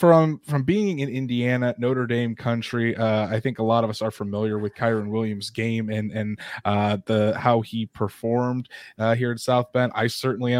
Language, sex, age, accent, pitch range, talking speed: English, male, 20-39, American, 115-135 Hz, 205 wpm